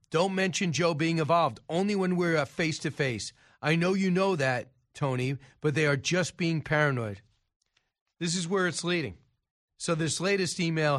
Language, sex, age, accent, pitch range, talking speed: English, male, 40-59, American, 150-195 Hz, 165 wpm